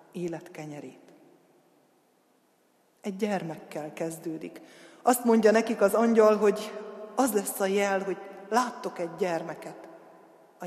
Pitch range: 190-225 Hz